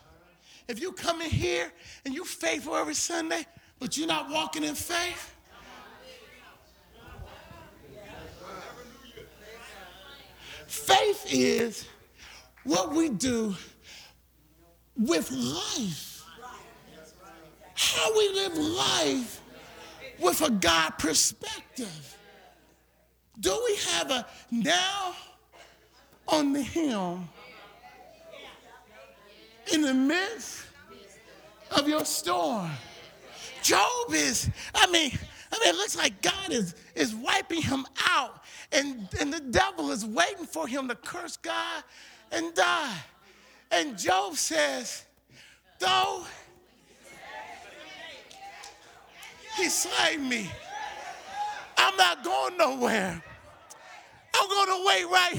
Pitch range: 245-385 Hz